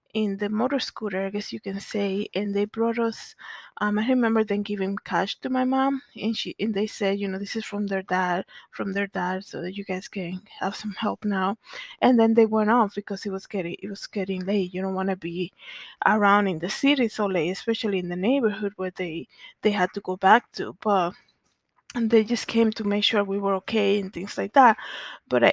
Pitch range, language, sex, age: 195-230 Hz, English, female, 20-39